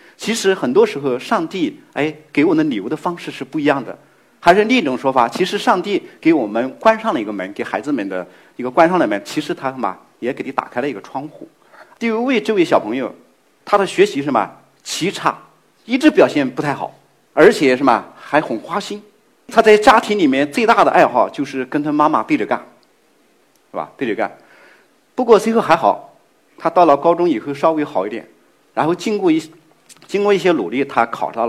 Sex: male